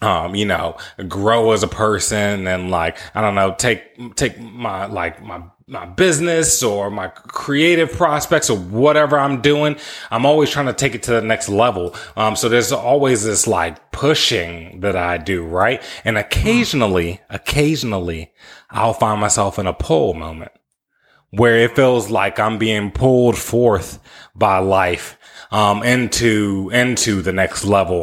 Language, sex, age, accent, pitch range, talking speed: English, male, 30-49, American, 95-115 Hz, 160 wpm